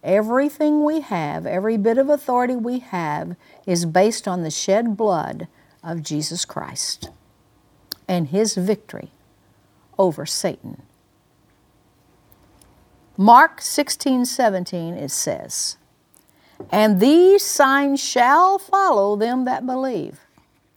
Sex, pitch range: female, 175-270 Hz